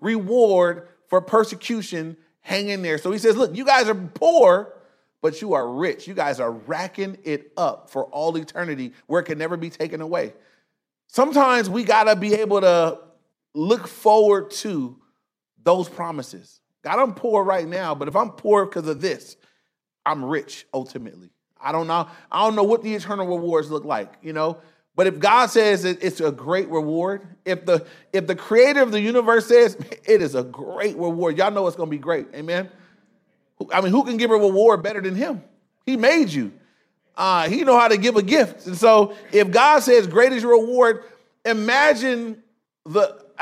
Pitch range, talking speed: 170-230 Hz, 185 wpm